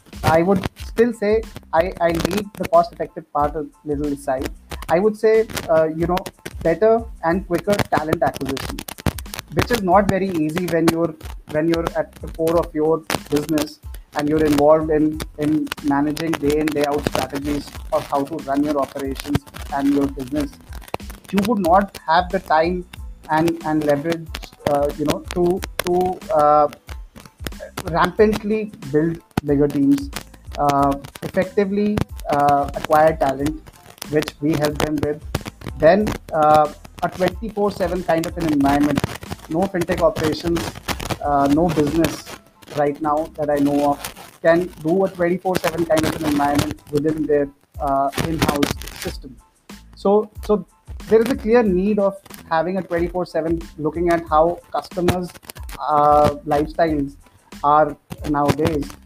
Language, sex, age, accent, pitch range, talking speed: English, male, 30-49, Indian, 145-175 Hz, 145 wpm